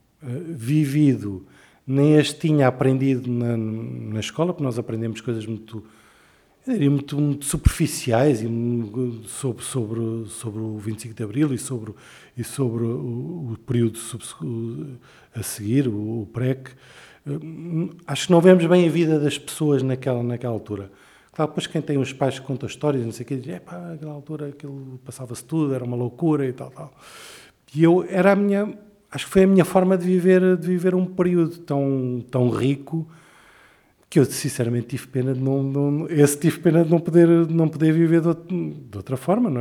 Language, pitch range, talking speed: Portuguese, 120-155 Hz, 175 wpm